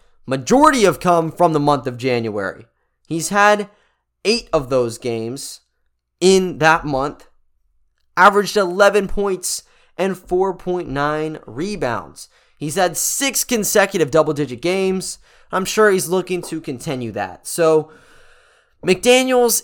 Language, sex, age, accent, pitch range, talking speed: English, male, 20-39, American, 140-185 Hz, 120 wpm